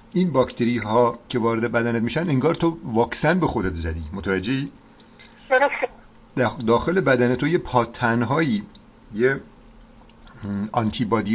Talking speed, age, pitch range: 105 wpm, 50-69, 110-130 Hz